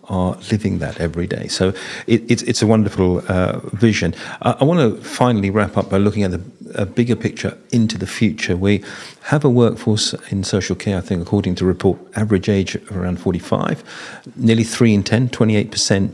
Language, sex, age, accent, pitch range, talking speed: English, male, 40-59, British, 90-115 Hz, 185 wpm